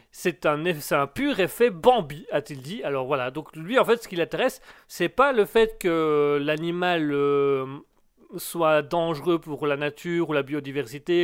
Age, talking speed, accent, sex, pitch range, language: 30-49, 175 wpm, French, male, 140-185 Hz, French